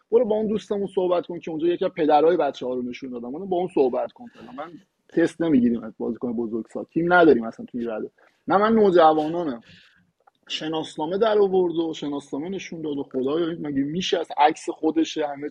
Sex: male